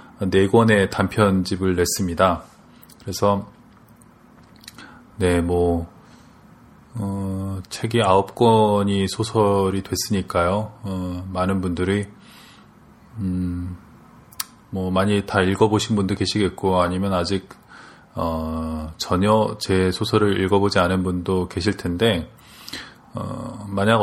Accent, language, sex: native, Korean, male